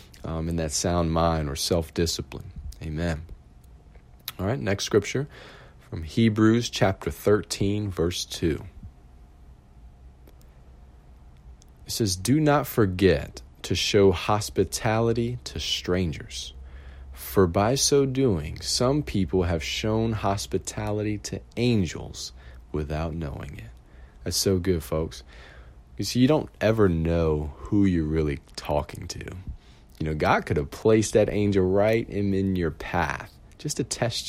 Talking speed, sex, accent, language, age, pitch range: 130 wpm, male, American, English, 40-59, 70-105 Hz